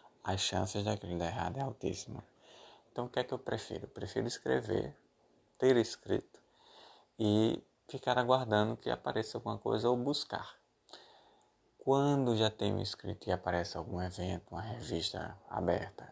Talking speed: 145 wpm